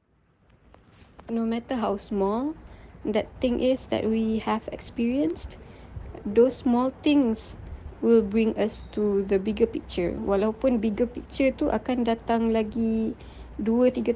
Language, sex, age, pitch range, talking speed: Malay, female, 20-39, 205-250 Hz, 125 wpm